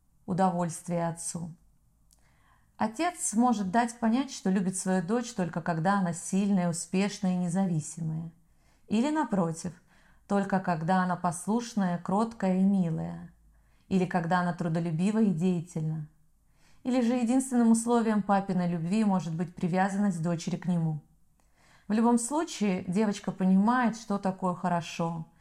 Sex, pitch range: female, 175-210 Hz